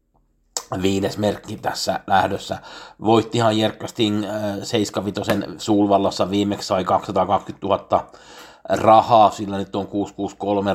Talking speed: 95 wpm